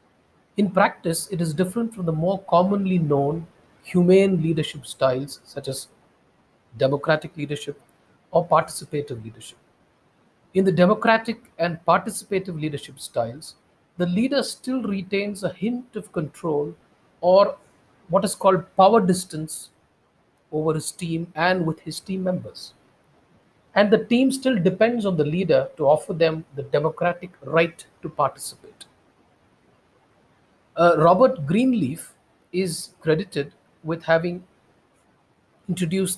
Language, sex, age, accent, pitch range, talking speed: English, male, 50-69, Indian, 150-190 Hz, 120 wpm